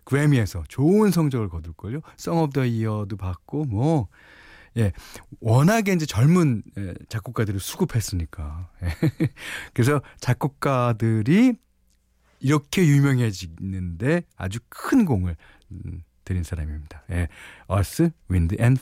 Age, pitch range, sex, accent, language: 40-59, 90-150 Hz, male, native, Korean